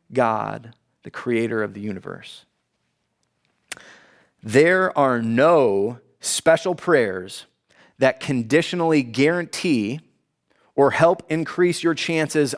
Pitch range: 125-165 Hz